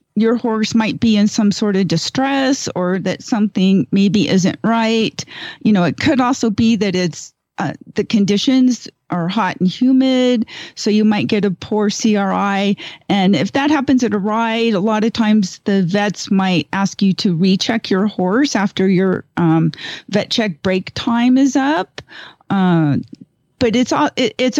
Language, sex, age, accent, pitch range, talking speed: English, female, 40-59, American, 185-240 Hz, 170 wpm